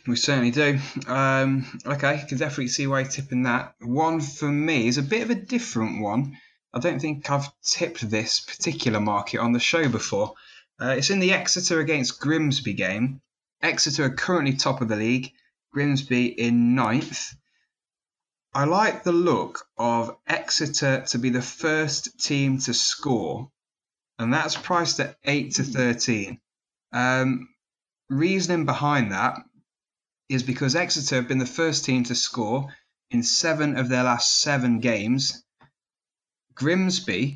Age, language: 20-39, English